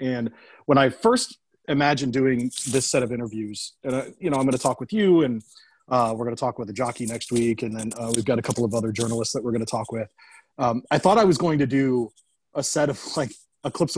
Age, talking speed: 30-49, 230 wpm